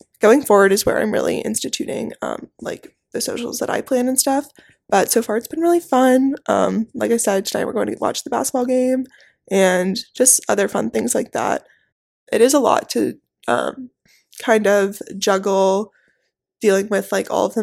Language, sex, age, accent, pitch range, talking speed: English, female, 20-39, American, 210-265 Hz, 195 wpm